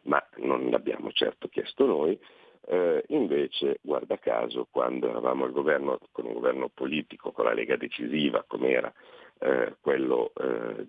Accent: native